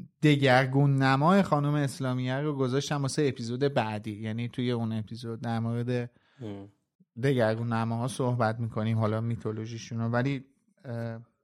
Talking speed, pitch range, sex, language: 125 wpm, 125-155 Hz, male, Persian